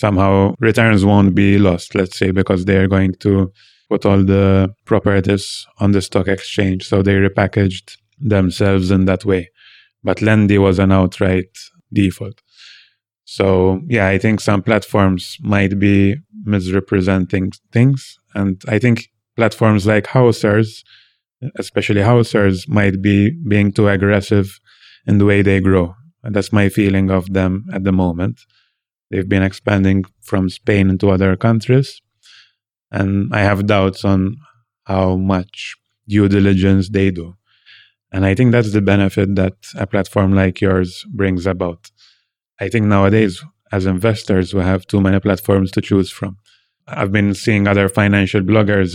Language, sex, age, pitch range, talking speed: English, male, 20-39, 95-105 Hz, 150 wpm